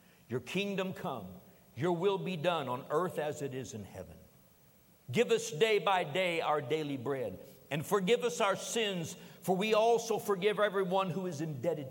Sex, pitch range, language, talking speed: male, 135-190 Hz, English, 175 wpm